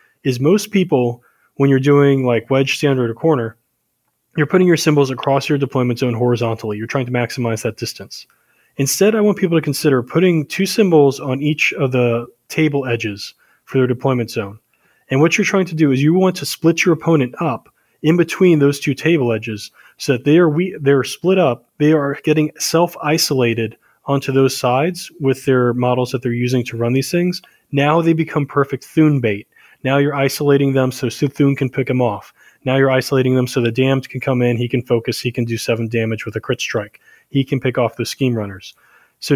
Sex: male